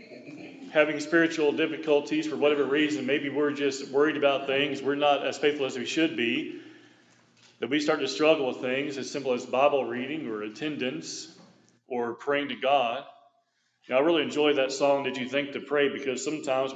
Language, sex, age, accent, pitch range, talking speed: English, male, 40-59, American, 140-170 Hz, 185 wpm